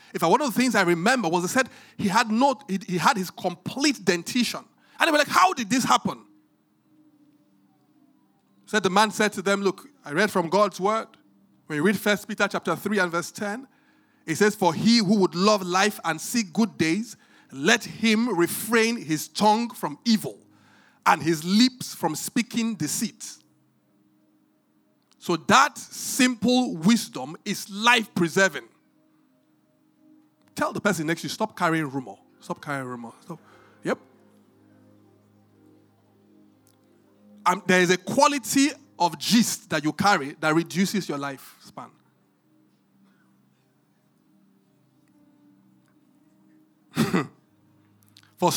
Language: English